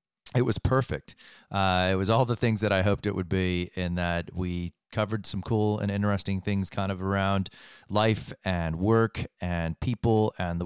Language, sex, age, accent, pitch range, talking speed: English, male, 30-49, American, 95-115 Hz, 190 wpm